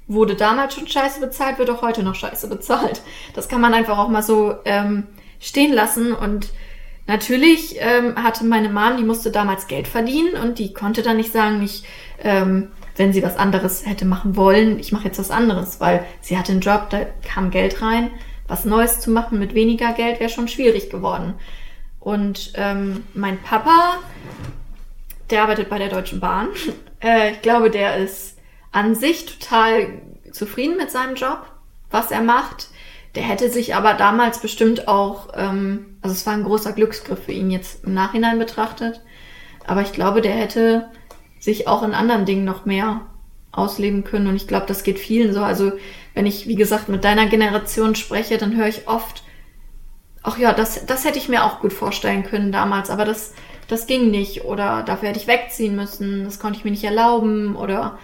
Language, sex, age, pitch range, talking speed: German, female, 20-39, 200-230 Hz, 185 wpm